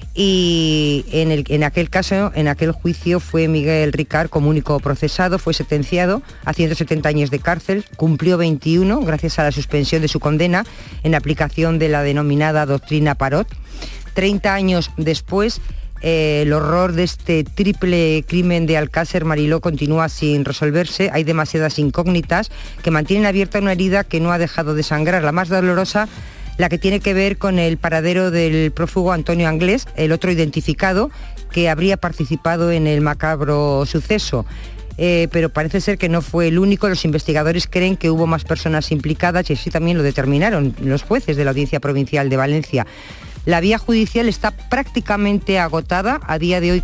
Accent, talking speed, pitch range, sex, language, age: Spanish, 170 wpm, 150-180 Hz, female, Spanish, 50-69